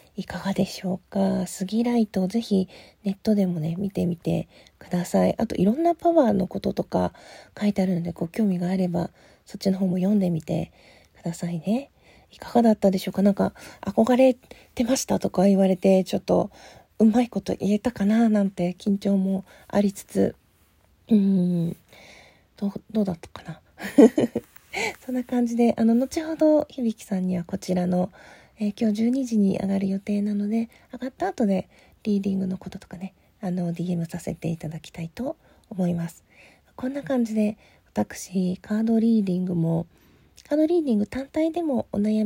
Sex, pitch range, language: female, 185-225 Hz, Japanese